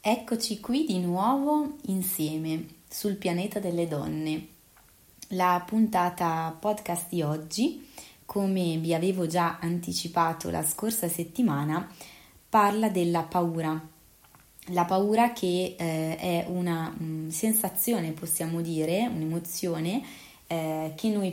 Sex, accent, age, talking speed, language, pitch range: female, native, 20-39, 105 wpm, Italian, 165-210 Hz